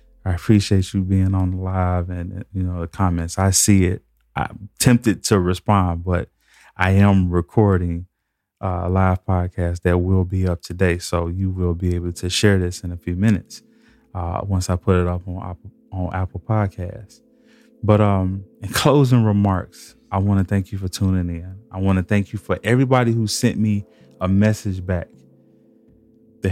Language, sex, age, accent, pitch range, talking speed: English, male, 20-39, American, 90-105 Hz, 180 wpm